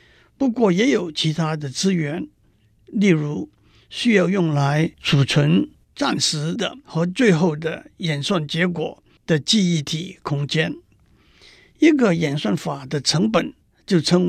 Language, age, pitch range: Chinese, 60-79, 150-195 Hz